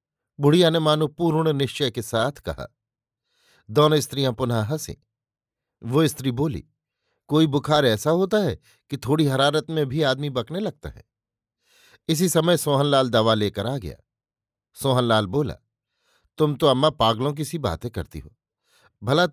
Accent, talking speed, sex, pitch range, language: native, 150 wpm, male, 115-155 Hz, Hindi